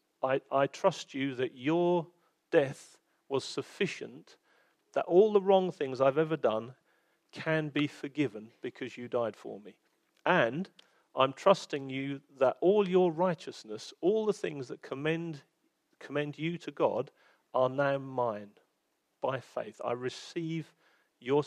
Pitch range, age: 135-180 Hz, 40-59